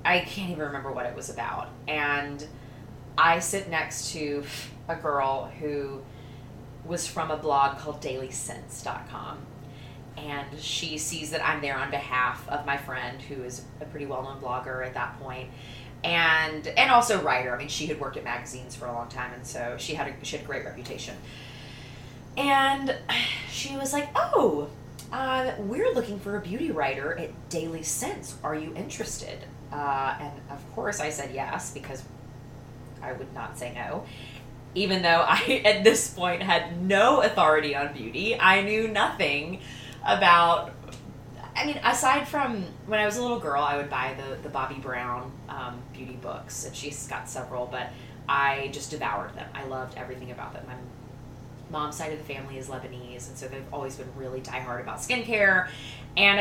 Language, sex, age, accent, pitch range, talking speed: English, female, 20-39, American, 125-160 Hz, 175 wpm